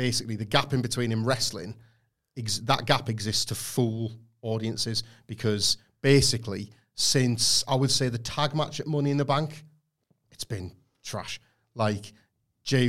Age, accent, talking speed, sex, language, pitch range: 40-59, British, 150 wpm, male, English, 110-135 Hz